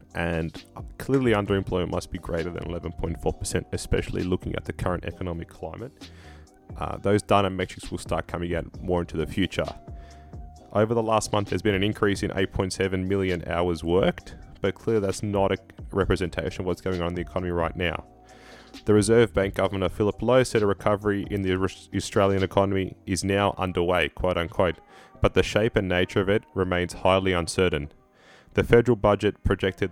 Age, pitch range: 20-39, 90-100 Hz